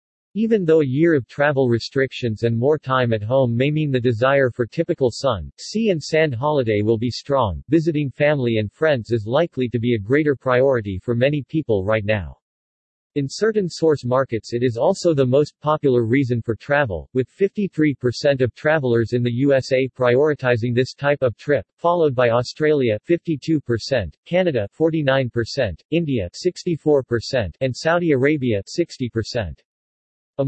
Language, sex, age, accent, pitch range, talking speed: English, male, 50-69, American, 115-150 Hz, 160 wpm